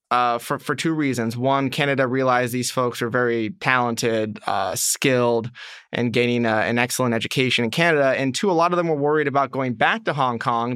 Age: 20-39